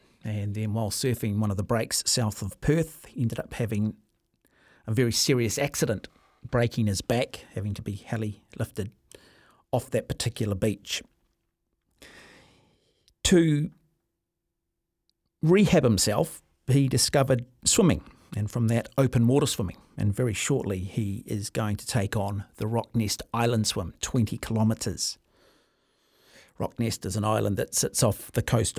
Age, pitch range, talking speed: 50-69, 105-125 Hz, 140 wpm